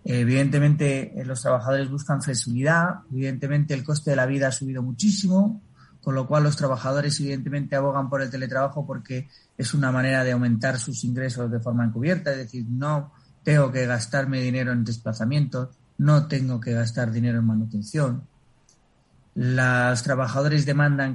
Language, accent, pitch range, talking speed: Spanish, Spanish, 125-145 Hz, 155 wpm